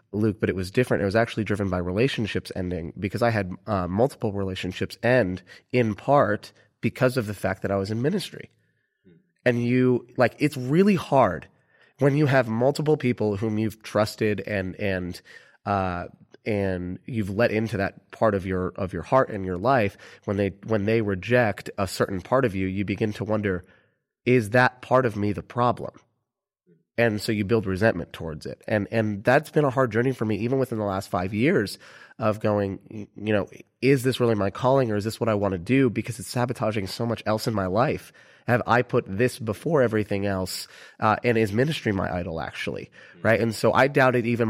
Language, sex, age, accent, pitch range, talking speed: English, male, 30-49, American, 100-125 Hz, 200 wpm